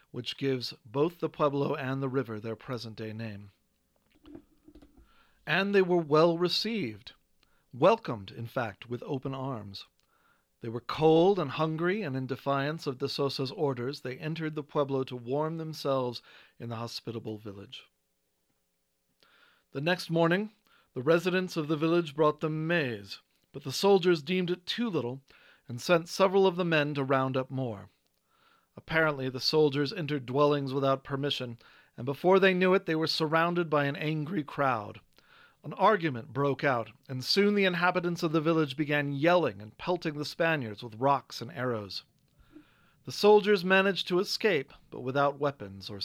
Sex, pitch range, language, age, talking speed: male, 125-170 Hz, English, 40-59, 160 wpm